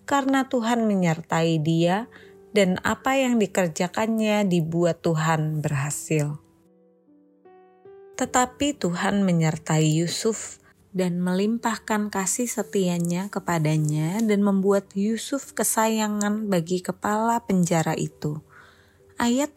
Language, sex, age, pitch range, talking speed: Indonesian, female, 20-39, 170-220 Hz, 90 wpm